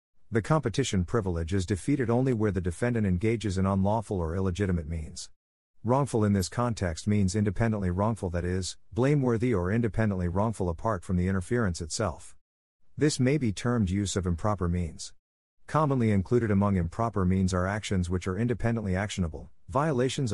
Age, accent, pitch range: 50-69, American, 90-115 Hz